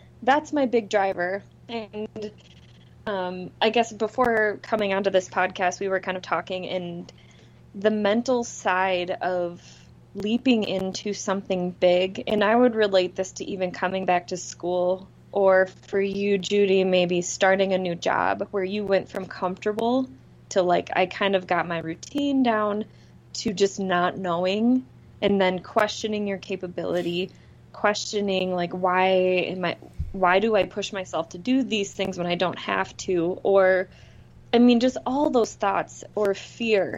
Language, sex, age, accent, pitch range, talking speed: English, female, 20-39, American, 180-215 Hz, 160 wpm